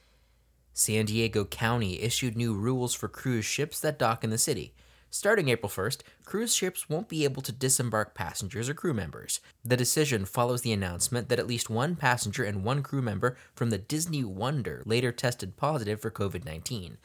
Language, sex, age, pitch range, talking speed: English, male, 20-39, 100-130 Hz, 180 wpm